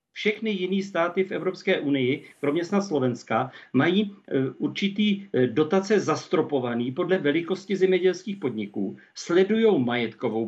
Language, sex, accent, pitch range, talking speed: Czech, male, native, 150-190 Hz, 110 wpm